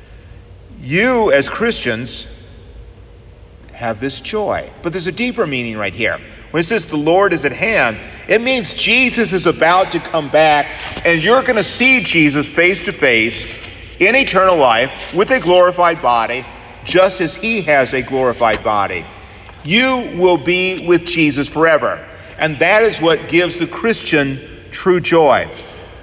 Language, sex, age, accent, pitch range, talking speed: English, male, 50-69, American, 120-180 Hz, 150 wpm